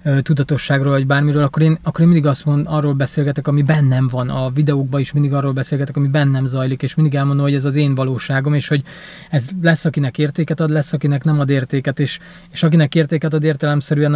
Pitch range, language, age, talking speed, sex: 135-160 Hz, Hungarian, 20-39, 210 wpm, male